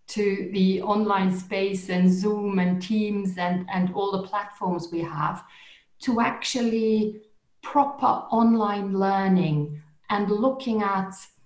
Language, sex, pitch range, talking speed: English, female, 170-205 Hz, 120 wpm